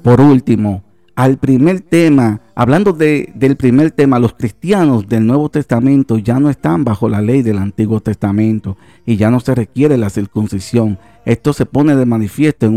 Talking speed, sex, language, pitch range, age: 175 wpm, male, Spanish, 110-140 Hz, 50-69